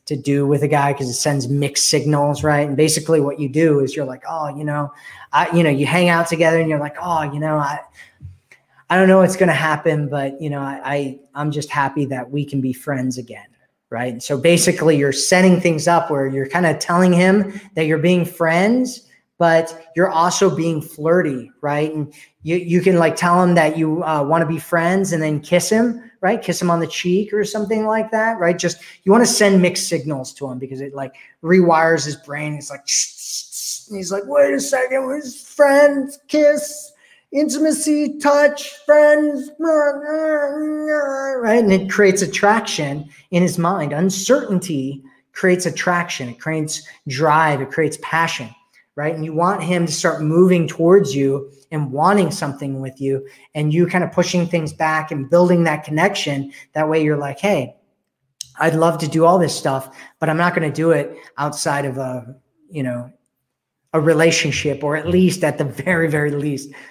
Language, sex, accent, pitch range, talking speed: English, male, American, 145-185 Hz, 195 wpm